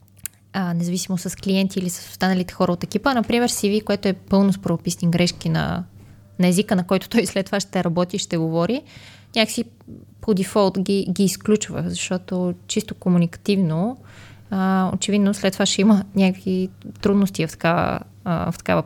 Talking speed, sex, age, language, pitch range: 160 wpm, female, 20-39, Bulgarian, 180-210 Hz